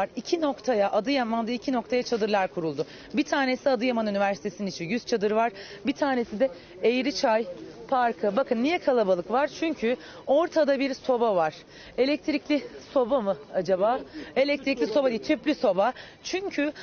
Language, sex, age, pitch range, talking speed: Turkish, female, 40-59, 215-290 Hz, 140 wpm